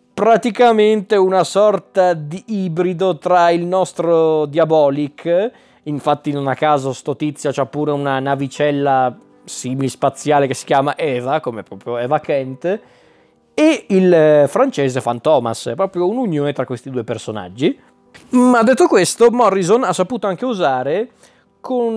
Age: 20-39